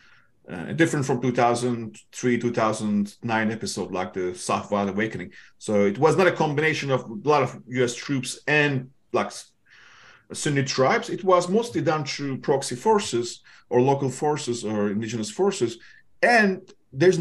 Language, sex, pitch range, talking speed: English, male, 120-175 Hz, 145 wpm